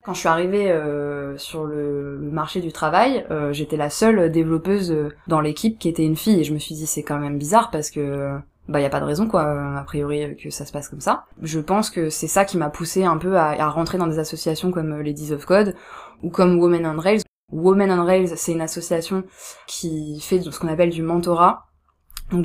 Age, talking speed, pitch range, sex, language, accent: 20-39, 235 wpm, 150-180 Hz, female, French, French